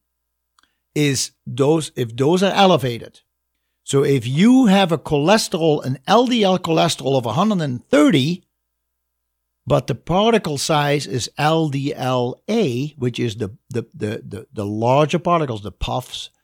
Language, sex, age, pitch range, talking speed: English, male, 60-79, 120-155 Hz, 125 wpm